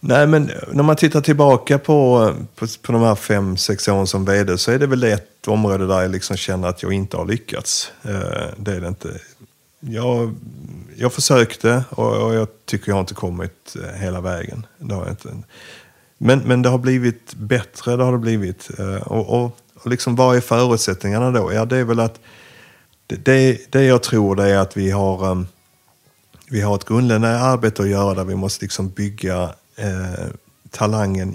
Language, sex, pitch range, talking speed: Swedish, male, 95-120 Hz, 180 wpm